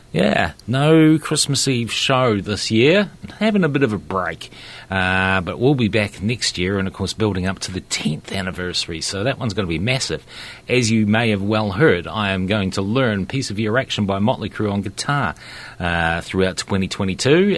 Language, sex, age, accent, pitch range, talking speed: English, male, 40-59, Australian, 90-120 Hz, 200 wpm